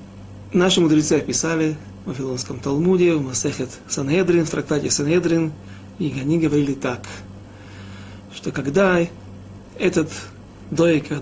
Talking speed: 105 wpm